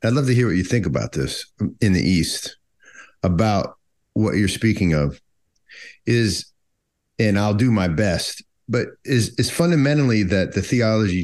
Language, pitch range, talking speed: English, 90-120 Hz, 160 wpm